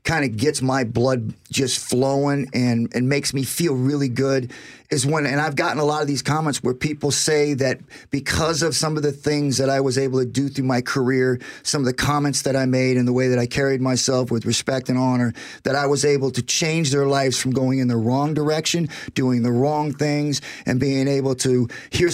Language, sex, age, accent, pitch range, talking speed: English, male, 40-59, American, 130-150 Hz, 230 wpm